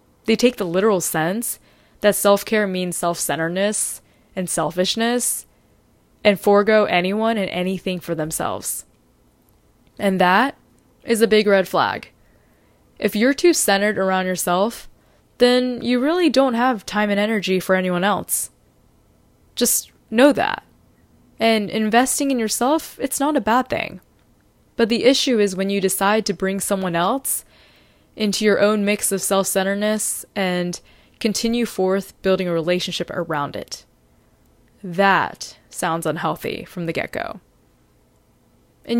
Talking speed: 130 wpm